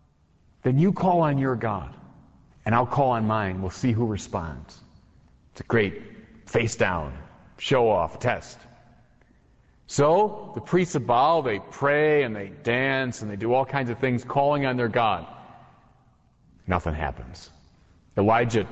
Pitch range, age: 100-155 Hz, 40-59